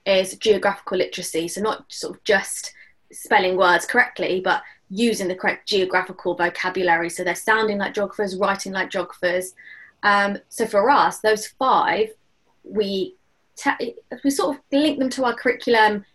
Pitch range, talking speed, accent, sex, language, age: 195-240 Hz, 150 wpm, British, female, English, 20-39